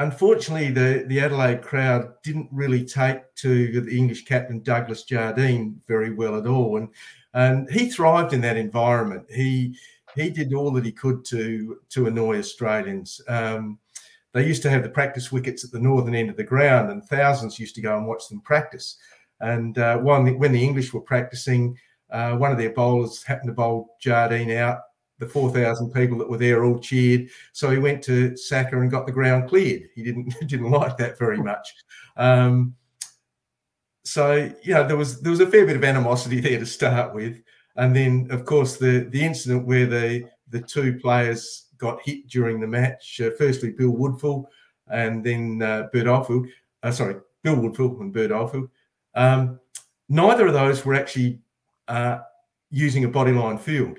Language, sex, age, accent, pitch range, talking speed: English, male, 50-69, Australian, 120-135 Hz, 185 wpm